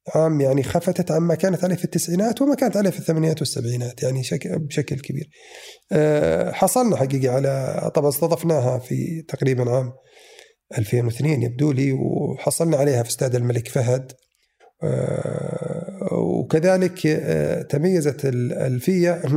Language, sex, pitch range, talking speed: Arabic, male, 135-170 Hz, 125 wpm